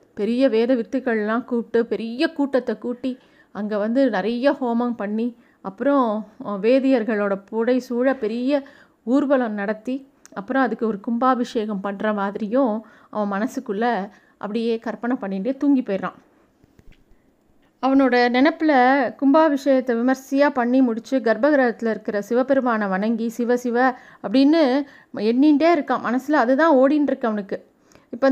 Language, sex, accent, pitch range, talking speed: Tamil, female, native, 235-285 Hz, 110 wpm